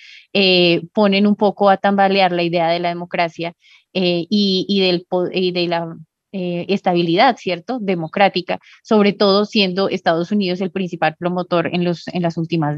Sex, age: female, 20-39